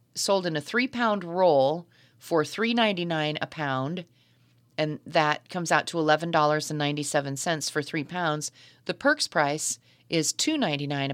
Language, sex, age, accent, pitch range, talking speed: English, female, 40-59, American, 140-185 Hz, 125 wpm